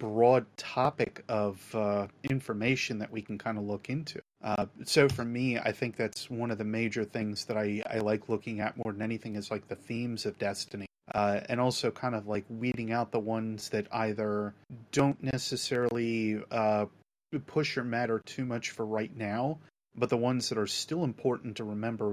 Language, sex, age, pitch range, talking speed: English, male, 30-49, 105-120 Hz, 195 wpm